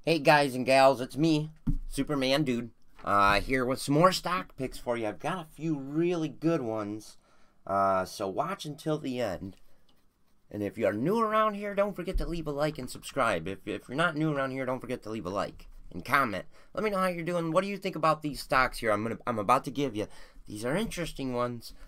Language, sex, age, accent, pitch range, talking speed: English, male, 30-49, American, 105-150 Hz, 235 wpm